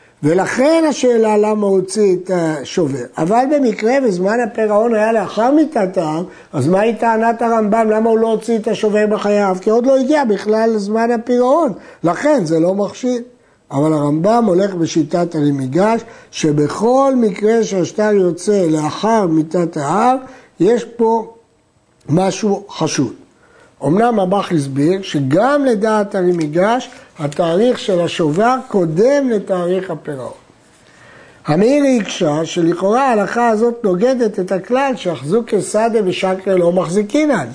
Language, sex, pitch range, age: Hebrew, male, 175-230 Hz, 60-79